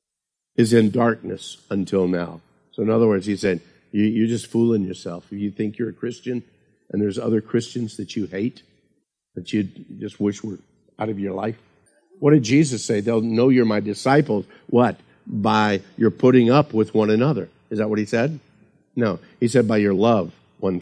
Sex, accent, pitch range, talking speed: male, American, 110-170 Hz, 185 wpm